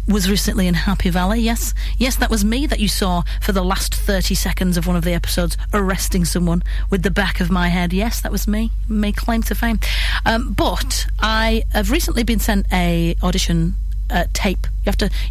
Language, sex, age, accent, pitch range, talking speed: English, female, 30-49, British, 180-230 Hz, 210 wpm